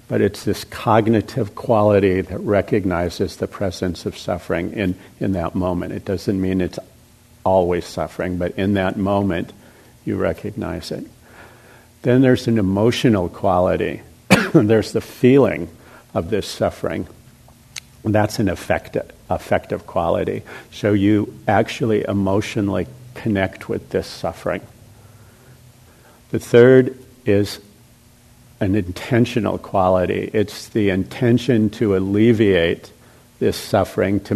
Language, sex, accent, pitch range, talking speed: English, male, American, 95-115 Hz, 115 wpm